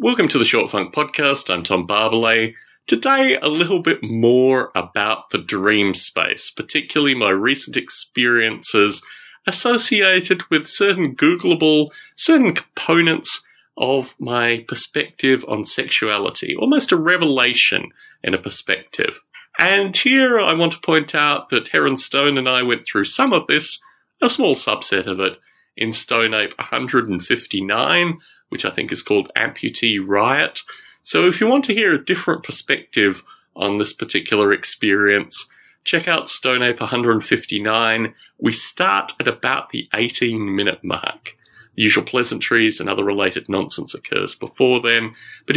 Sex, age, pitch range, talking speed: male, 30-49, 115-180 Hz, 145 wpm